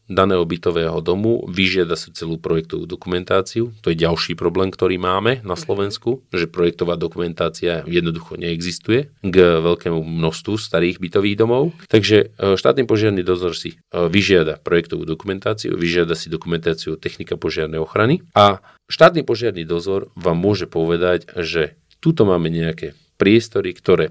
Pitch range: 85-110 Hz